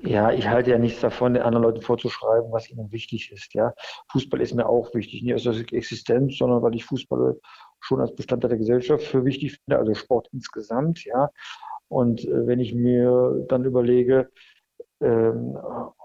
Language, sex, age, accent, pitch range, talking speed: German, male, 50-69, German, 115-130 Hz, 175 wpm